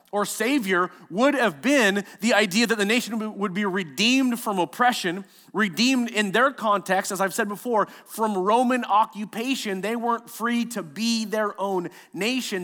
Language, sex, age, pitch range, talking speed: English, male, 30-49, 195-235 Hz, 160 wpm